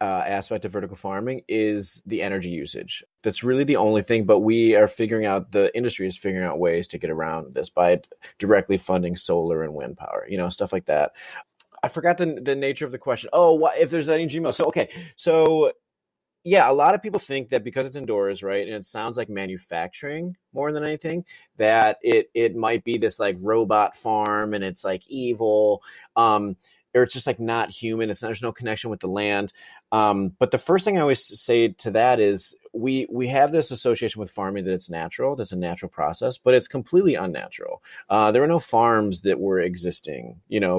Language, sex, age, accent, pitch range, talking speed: English, male, 30-49, American, 95-140 Hz, 210 wpm